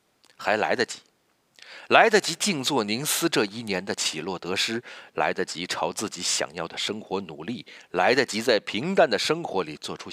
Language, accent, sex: Chinese, native, male